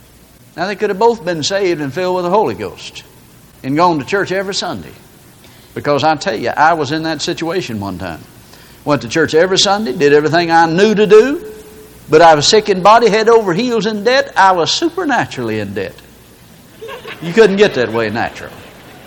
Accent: American